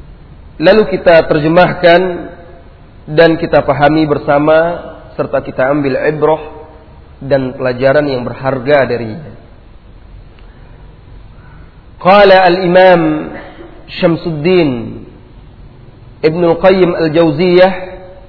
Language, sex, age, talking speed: Malay, male, 40-59, 70 wpm